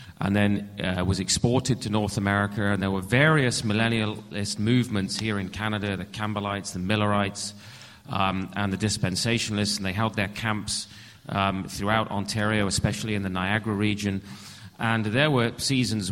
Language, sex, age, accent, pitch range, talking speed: English, male, 30-49, British, 100-115 Hz, 155 wpm